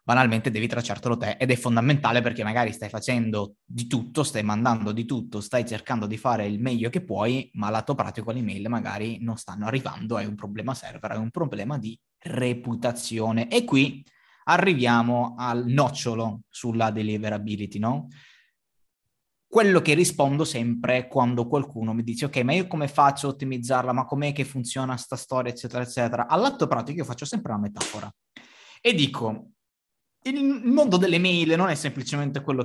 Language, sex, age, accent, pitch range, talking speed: Italian, male, 20-39, native, 115-140 Hz, 165 wpm